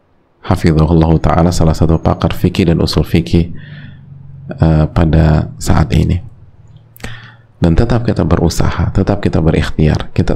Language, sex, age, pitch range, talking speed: Indonesian, male, 30-49, 80-90 Hz, 120 wpm